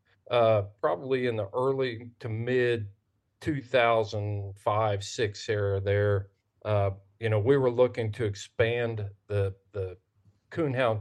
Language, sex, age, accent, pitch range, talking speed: English, male, 40-59, American, 100-120 Hz, 115 wpm